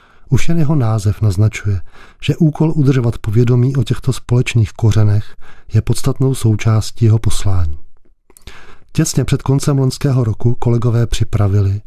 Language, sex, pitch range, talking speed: Czech, male, 105-130 Hz, 125 wpm